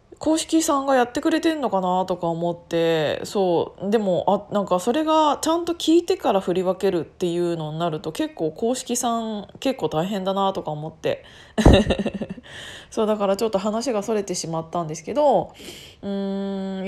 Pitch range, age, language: 185-255 Hz, 20-39, Japanese